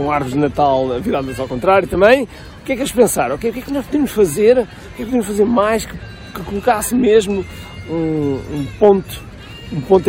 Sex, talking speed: male, 215 wpm